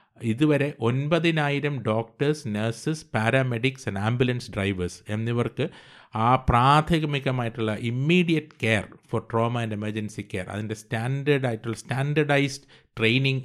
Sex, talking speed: male, 100 wpm